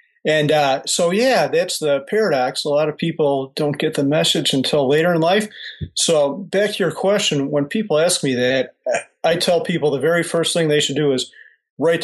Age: 40-59